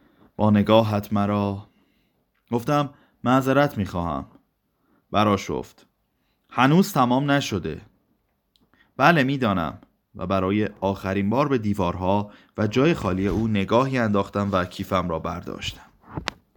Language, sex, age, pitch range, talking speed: Persian, male, 30-49, 95-140 Hz, 100 wpm